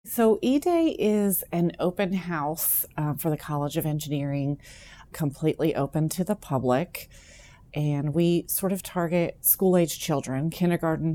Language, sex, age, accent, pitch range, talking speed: English, female, 30-49, American, 145-170 Hz, 135 wpm